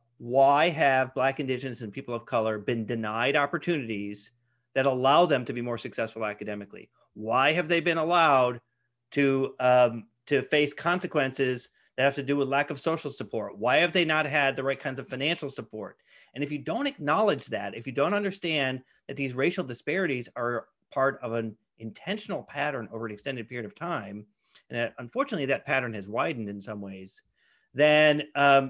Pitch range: 115-145 Hz